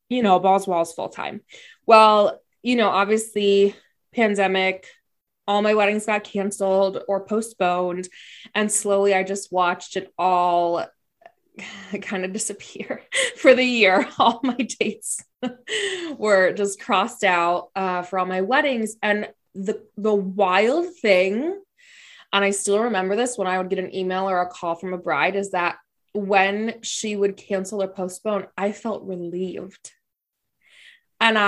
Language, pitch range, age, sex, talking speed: English, 190-230 Hz, 20-39, female, 145 wpm